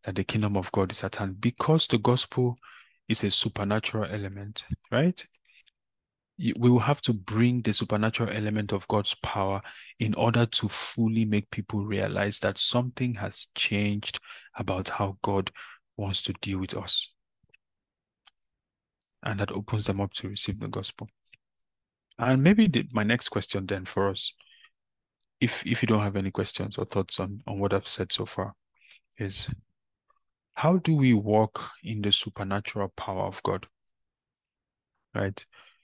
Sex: male